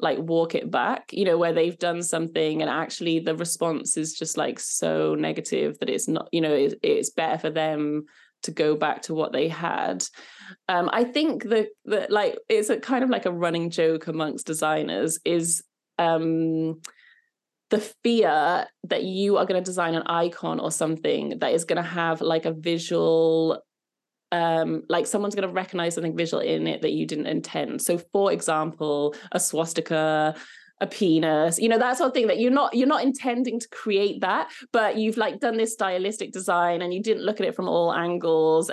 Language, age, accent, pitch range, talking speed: English, 20-39, British, 160-205 Hz, 195 wpm